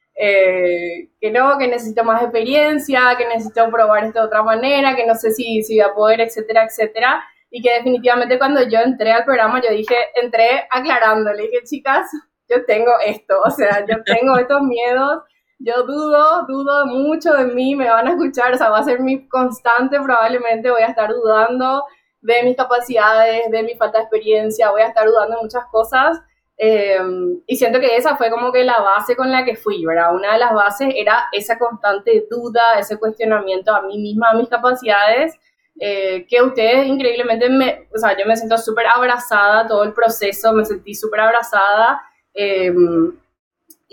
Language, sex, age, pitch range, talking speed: Spanish, female, 20-39, 220-255 Hz, 185 wpm